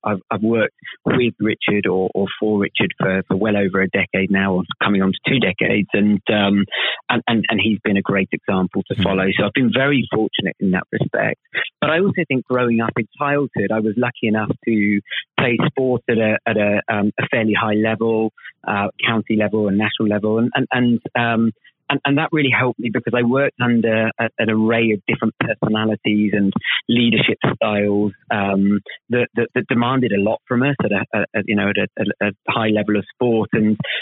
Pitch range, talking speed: 100-115 Hz, 205 wpm